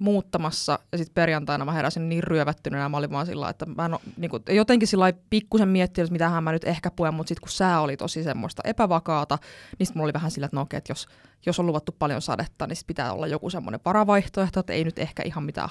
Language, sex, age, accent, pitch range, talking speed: Finnish, female, 20-39, native, 155-190 Hz, 245 wpm